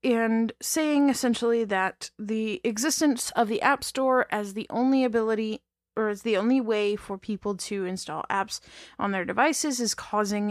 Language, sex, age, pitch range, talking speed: English, female, 20-39, 200-250 Hz, 165 wpm